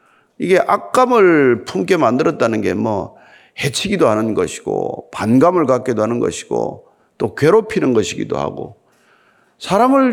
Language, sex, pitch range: Korean, male, 175-265 Hz